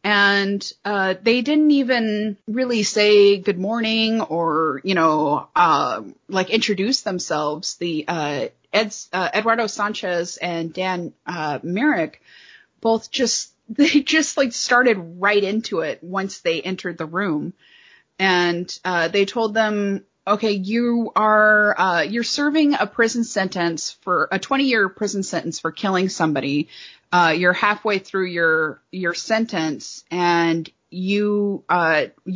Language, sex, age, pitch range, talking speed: English, female, 30-49, 175-230 Hz, 135 wpm